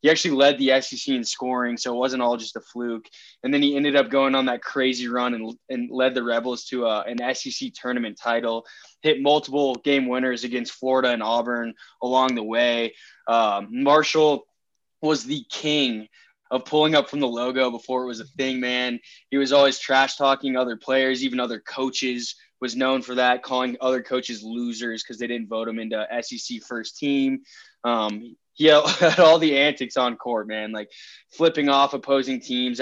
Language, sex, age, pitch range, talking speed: English, male, 20-39, 115-140 Hz, 190 wpm